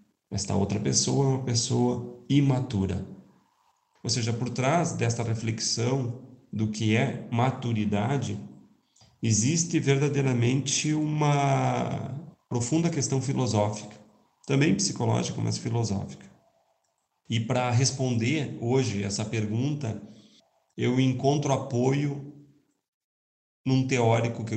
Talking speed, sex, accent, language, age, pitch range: 95 wpm, male, Brazilian, Portuguese, 40-59, 115-140 Hz